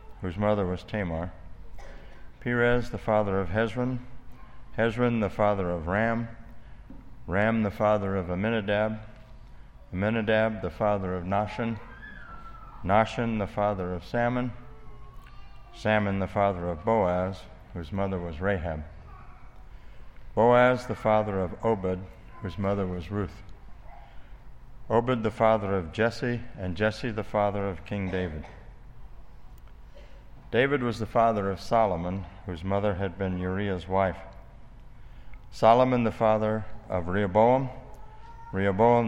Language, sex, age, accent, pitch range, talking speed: English, male, 60-79, American, 95-115 Hz, 120 wpm